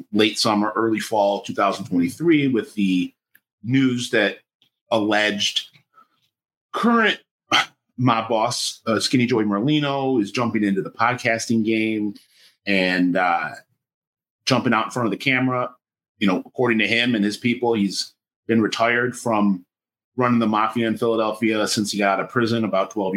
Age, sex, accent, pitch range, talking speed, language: 30-49, male, American, 105-130 Hz, 150 wpm, English